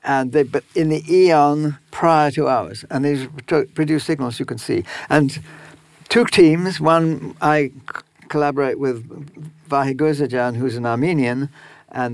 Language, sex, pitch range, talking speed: Slovak, male, 135-165 Hz, 140 wpm